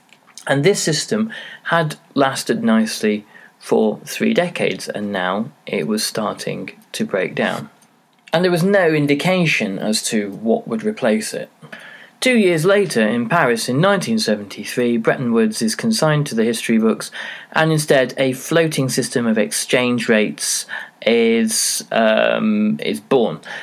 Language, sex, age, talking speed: English, male, 20-39, 140 wpm